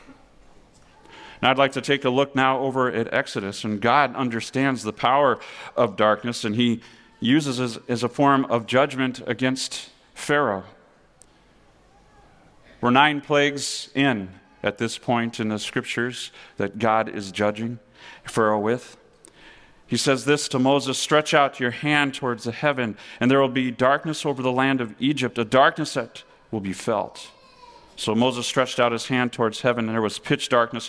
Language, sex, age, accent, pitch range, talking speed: English, male, 40-59, American, 110-130 Hz, 165 wpm